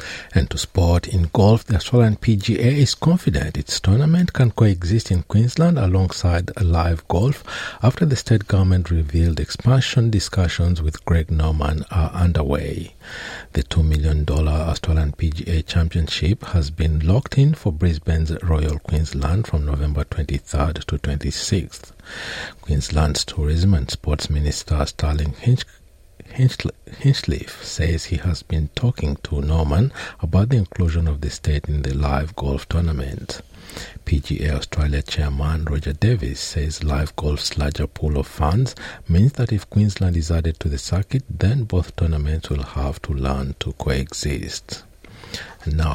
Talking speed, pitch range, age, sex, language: 140 wpm, 75-105 Hz, 60-79, male, English